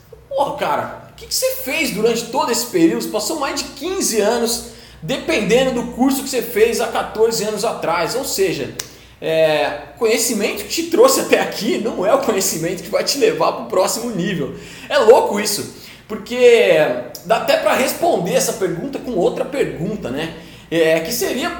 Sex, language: male, Portuguese